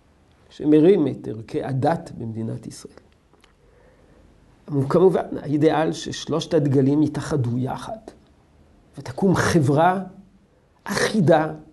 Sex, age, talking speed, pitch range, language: male, 50-69, 80 wpm, 125-185 Hz, Hebrew